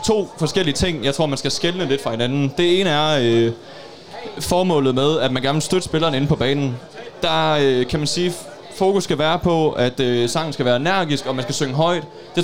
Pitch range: 125-160 Hz